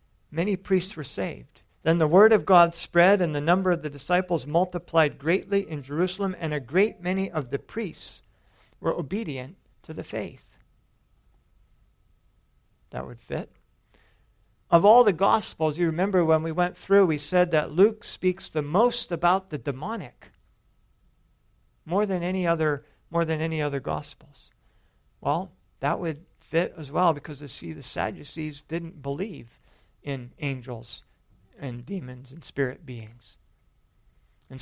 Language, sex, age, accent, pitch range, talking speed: English, male, 50-69, American, 140-175 Hz, 145 wpm